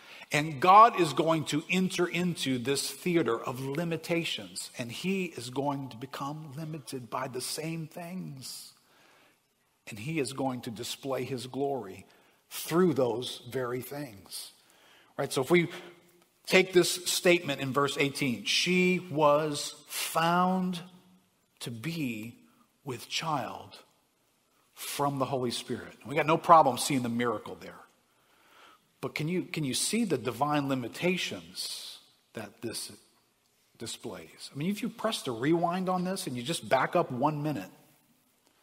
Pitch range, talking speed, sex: 135-175 Hz, 140 wpm, male